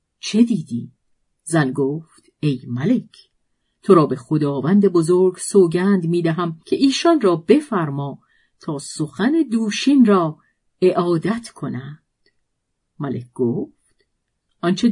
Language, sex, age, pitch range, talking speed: Persian, female, 50-69, 160-230 Hz, 105 wpm